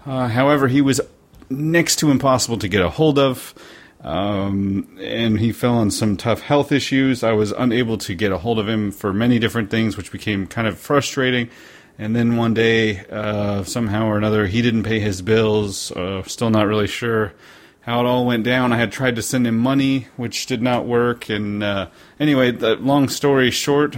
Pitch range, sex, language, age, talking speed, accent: 105-125 Hz, male, English, 30-49, 200 wpm, American